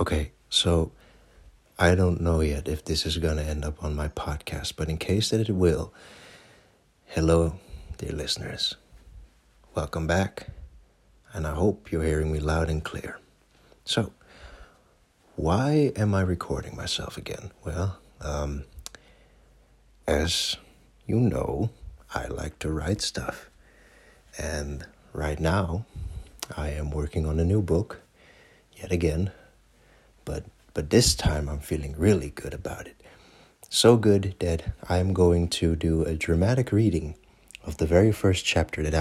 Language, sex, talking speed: English, male, 140 wpm